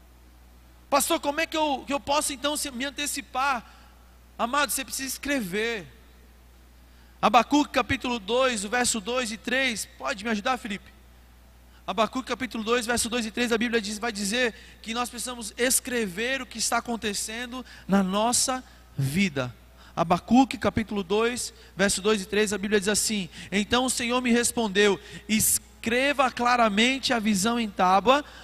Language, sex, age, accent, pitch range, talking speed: Portuguese, male, 20-39, Brazilian, 155-245 Hz, 150 wpm